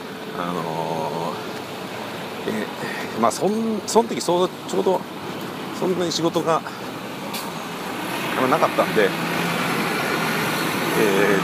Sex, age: male, 50-69